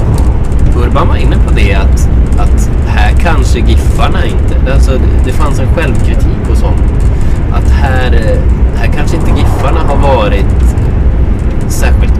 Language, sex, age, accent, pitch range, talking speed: Swedish, male, 20-39, native, 65-85 Hz, 145 wpm